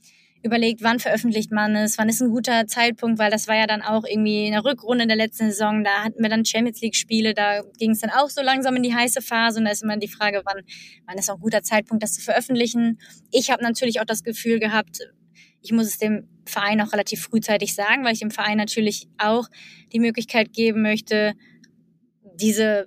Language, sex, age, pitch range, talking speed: German, female, 20-39, 210-240 Hz, 220 wpm